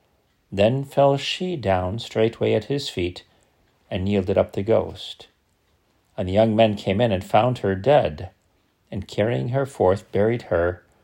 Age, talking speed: 50-69, 160 wpm